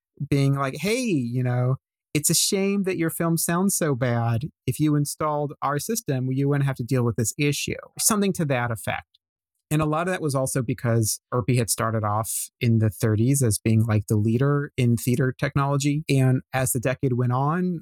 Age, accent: 30-49, American